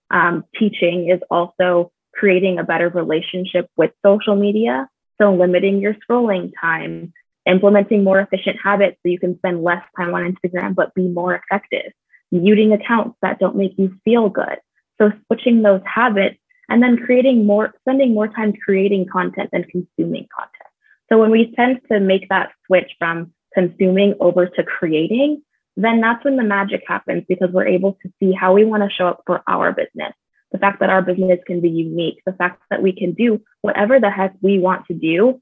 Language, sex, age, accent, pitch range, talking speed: English, female, 20-39, American, 175-210 Hz, 185 wpm